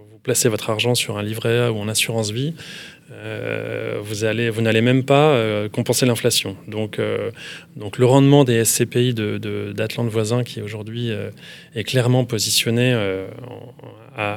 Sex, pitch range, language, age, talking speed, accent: male, 110-135 Hz, French, 20-39, 165 wpm, French